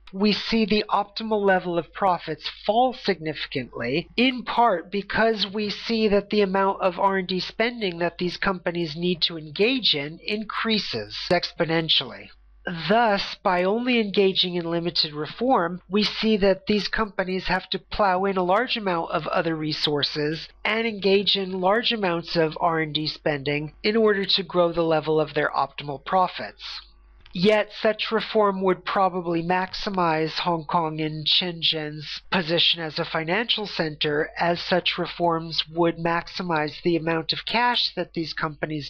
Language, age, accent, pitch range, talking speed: English, 40-59, American, 155-200 Hz, 150 wpm